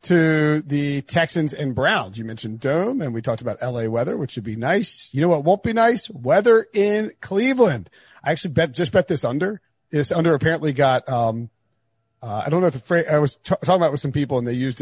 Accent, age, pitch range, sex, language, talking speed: American, 40-59, 130-180 Hz, male, English, 235 wpm